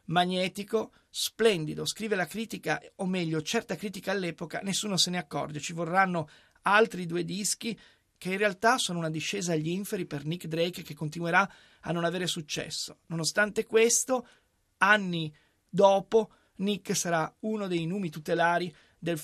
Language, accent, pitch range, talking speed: Italian, native, 155-190 Hz, 145 wpm